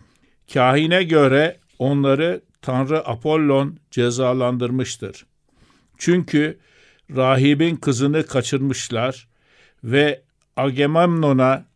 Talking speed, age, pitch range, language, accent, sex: 60 wpm, 60-79, 125-160 Hz, Turkish, native, male